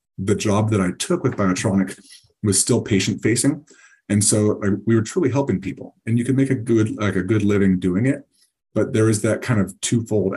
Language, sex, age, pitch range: English, male, 30-49, 95-110 Hz